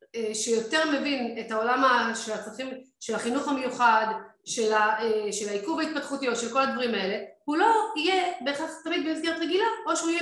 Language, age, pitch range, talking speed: Hebrew, 30-49, 220-275 Hz, 145 wpm